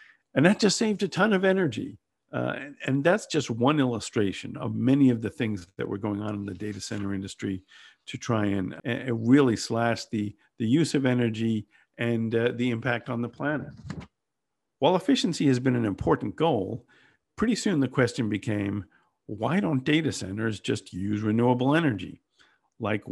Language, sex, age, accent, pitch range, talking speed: English, male, 50-69, American, 105-130 Hz, 175 wpm